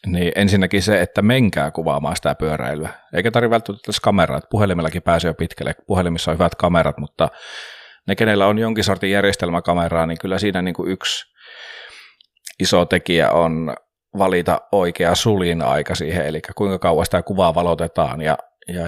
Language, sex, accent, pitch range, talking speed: Finnish, male, native, 85-100 Hz, 155 wpm